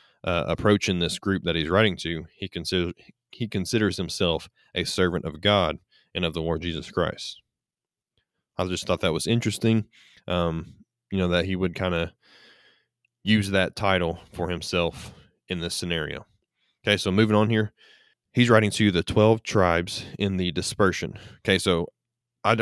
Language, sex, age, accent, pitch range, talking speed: English, male, 20-39, American, 90-105 Hz, 165 wpm